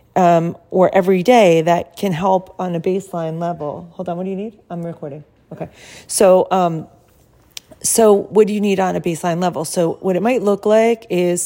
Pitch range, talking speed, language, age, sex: 160-190 Hz, 200 wpm, English, 40-59, female